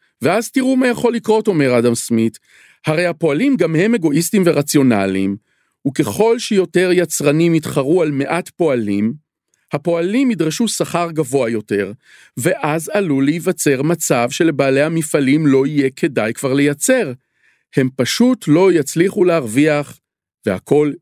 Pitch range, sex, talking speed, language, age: 130-205 Hz, male, 125 wpm, Hebrew, 40-59